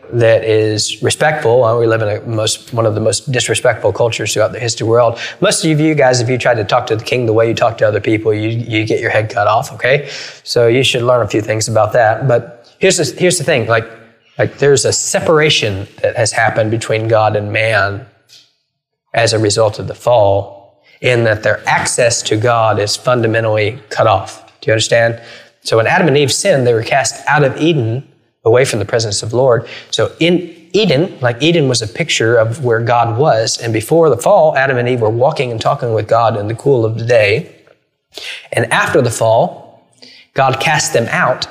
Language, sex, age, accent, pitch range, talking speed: English, male, 20-39, American, 110-135 Hz, 215 wpm